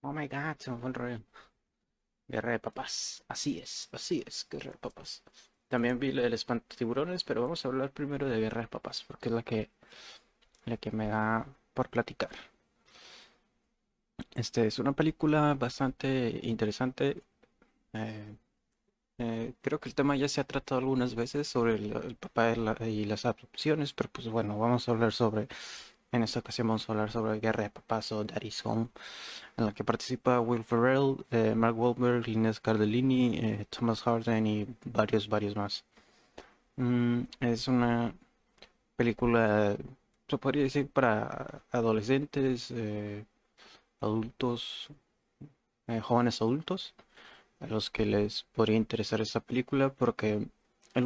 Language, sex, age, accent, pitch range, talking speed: Spanish, male, 30-49, Mexican, 110-130 Hz, 155 wpm